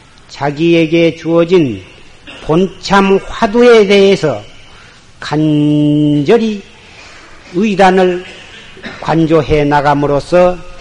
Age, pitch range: 40-59, 145-195 Hz